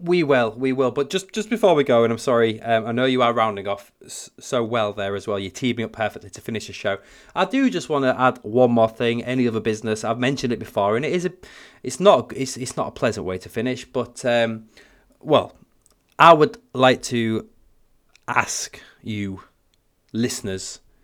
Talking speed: 210 wpm